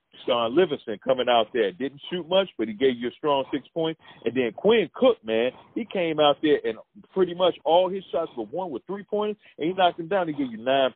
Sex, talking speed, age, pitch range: male, 250 wpm, 40-59, 145-195 Hz